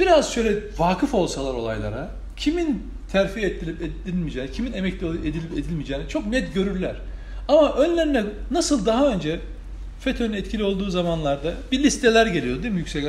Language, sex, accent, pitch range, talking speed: Turkish, male, native, 165-255 Hz, 140 wpm